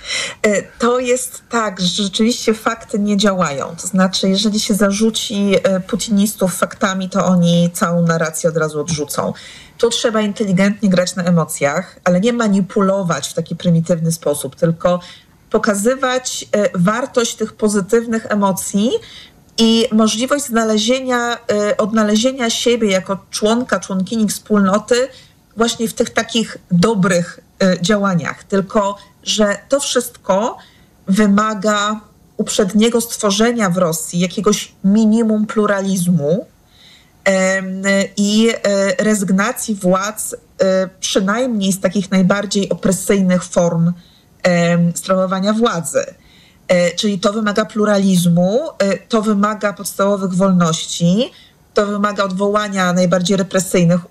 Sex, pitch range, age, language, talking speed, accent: female, 185-220 Hz, 40-59, Polish, 100 wpm, native